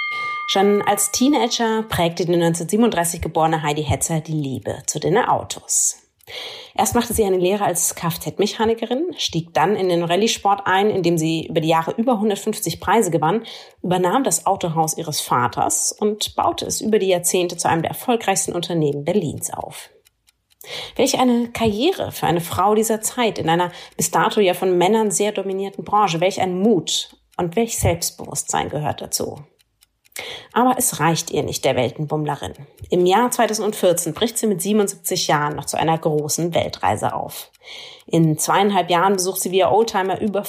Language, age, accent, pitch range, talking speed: German, 30-49, German, 165-220 Hz, 165 wpm